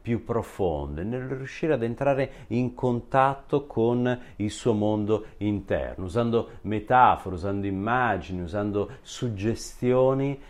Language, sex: Italian, male